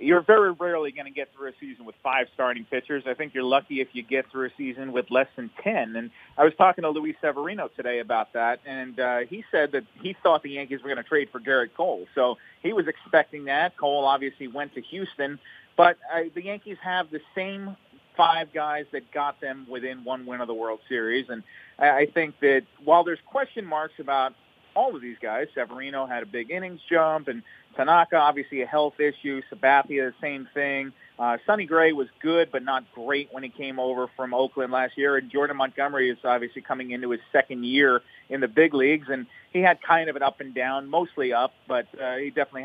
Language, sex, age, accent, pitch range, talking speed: English, male, 40-59, American, 130-160 Hz, 220 wpm